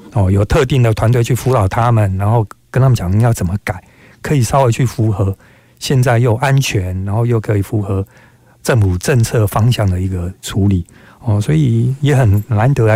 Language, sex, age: Chinese, male, 50-69